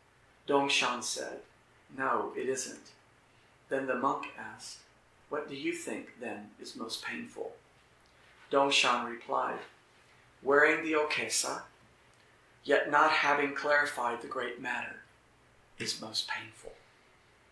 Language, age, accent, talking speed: English, 50-69, American, 110 wpm